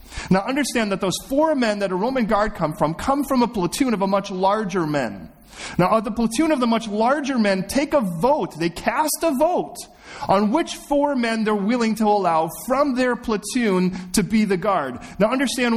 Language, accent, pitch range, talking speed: English, American, 170-245 Hz, 200 wpm